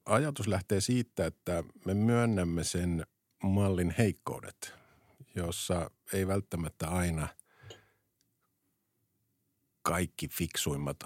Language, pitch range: Finnish, 85-105 Hz